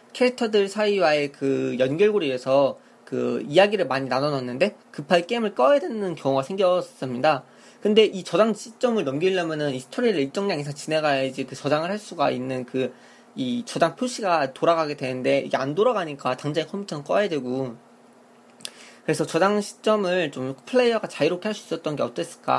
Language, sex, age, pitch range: Korean, male, 20-39, 140-205 Hz